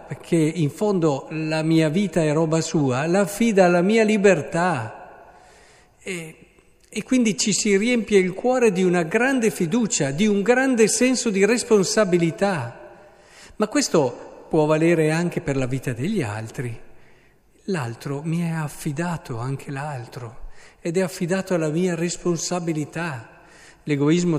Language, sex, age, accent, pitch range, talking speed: Italian, male, 50-69, native, 145-200 Hz, 135 wpm